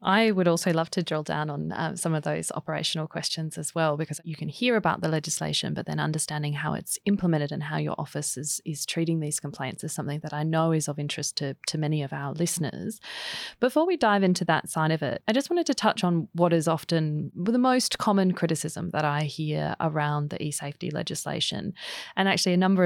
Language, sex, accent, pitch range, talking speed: English, female, Australian, 155-180 Hz, 220 wpm